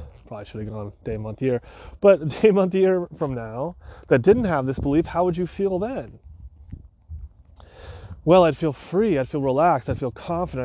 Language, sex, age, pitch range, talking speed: English, male, 30-49, 110-175 Hz, 190 wpm